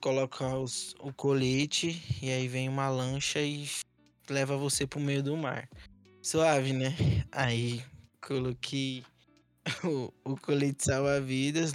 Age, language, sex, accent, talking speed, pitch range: 20-39, Portuguese, male, Brazilian, 115 wpm, 130-155 Hz